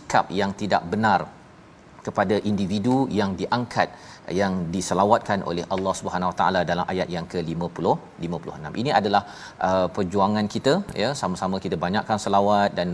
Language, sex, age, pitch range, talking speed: Malayalam, male, 40-59, 100-120 Hz, 130 wpm